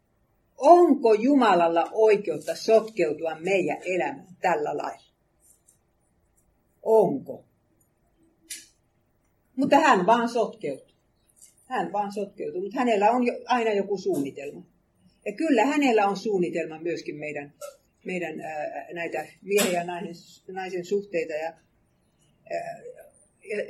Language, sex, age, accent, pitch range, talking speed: Finnish, female, 60-79, native, 170-225 Hz, 90 wpm